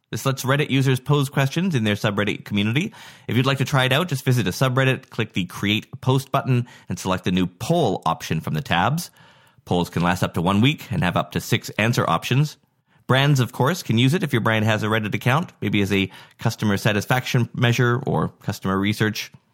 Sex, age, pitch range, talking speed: male, 30-49, 125-180 Hz, 220 wpm